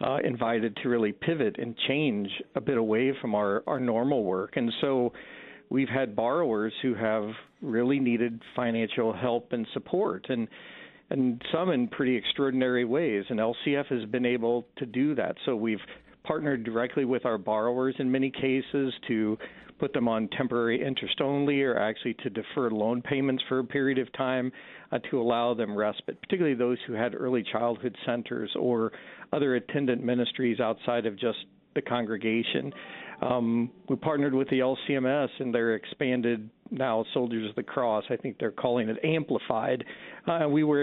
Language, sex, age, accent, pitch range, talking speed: English, male, 50-69, American, 115-135 Hz, 170 wpm